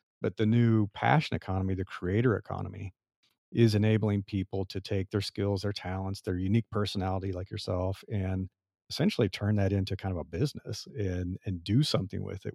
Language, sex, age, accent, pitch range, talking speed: English, male, 40-59, American, 95-110 Hz, 175 wpm